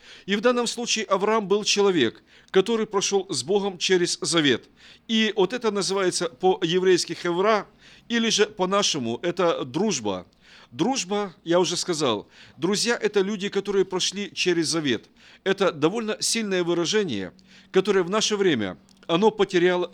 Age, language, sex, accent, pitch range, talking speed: 50-69, Russian, male, native, 175-215 Hz, 140 wpm